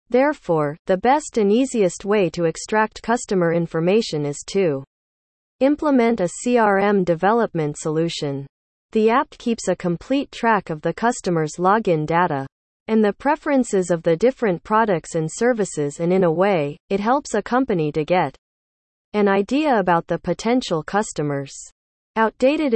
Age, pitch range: 40-59, 160-225 Hz